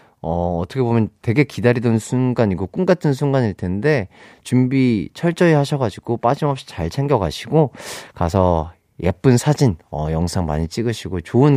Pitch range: 105-155 Hz